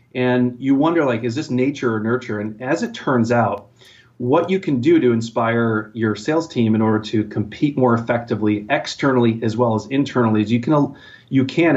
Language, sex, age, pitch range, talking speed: English, male, 30-49, 110-125 Hz, 200 wpm